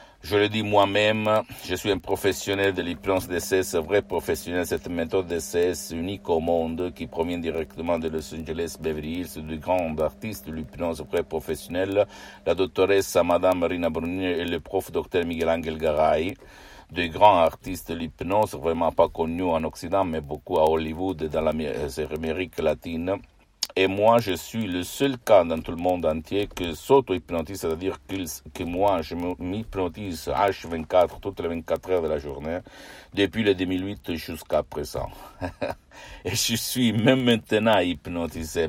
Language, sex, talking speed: Italian, male, 165 wpm